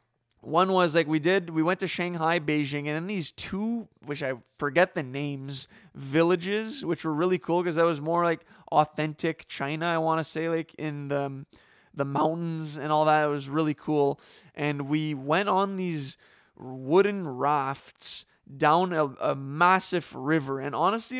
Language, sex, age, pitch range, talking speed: English, male, 20-39, 145-175 Hz, 175 wpm